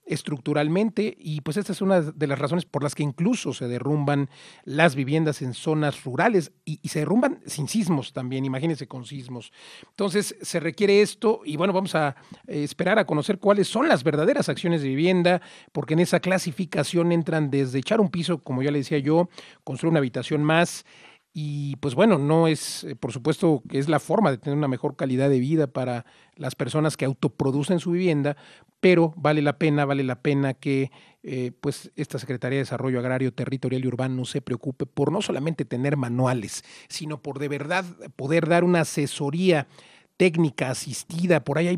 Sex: male